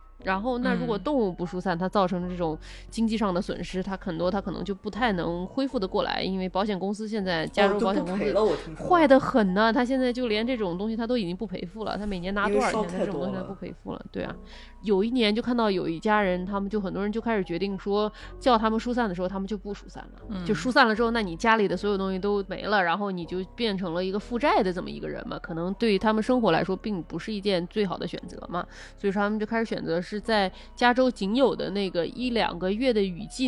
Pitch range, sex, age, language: 185-225 Hz, female, 20-39, Chinese